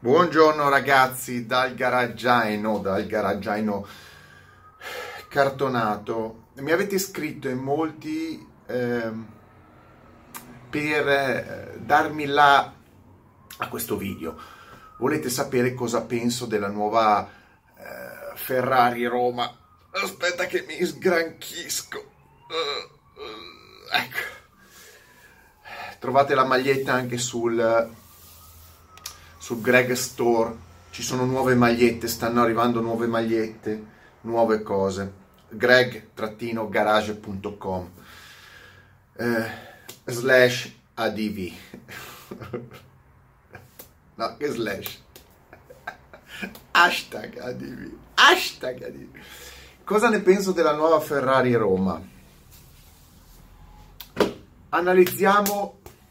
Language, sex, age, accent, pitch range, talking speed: Italian, male, 30-49, native, 105-135 Hz, 80 wpm